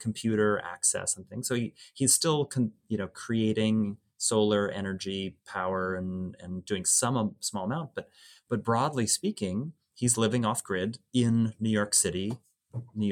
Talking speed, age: 160 wpm, 30-49